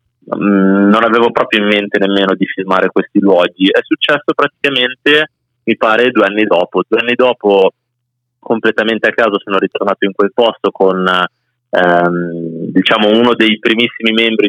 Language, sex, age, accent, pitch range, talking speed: Italian, male, 30-49, native, 95-125 Hz, 150 wpm